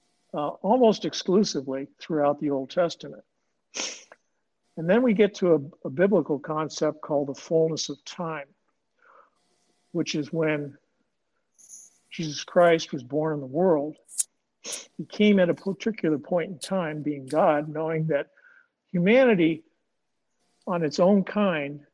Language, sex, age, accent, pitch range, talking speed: English, male, 60-79, American, 145-180 Hz, 130 wpm